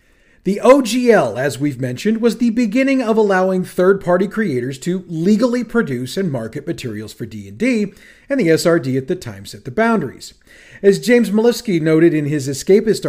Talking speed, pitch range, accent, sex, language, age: 165 wpm, 145-205 Hz, American, male, English, 40-59